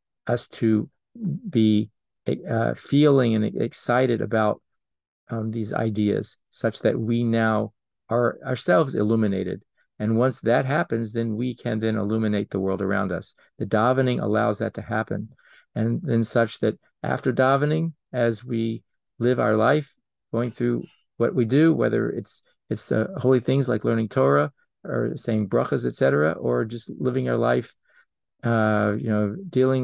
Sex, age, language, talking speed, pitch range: male, 40-59, English, 150 wpm, 105-130 Hz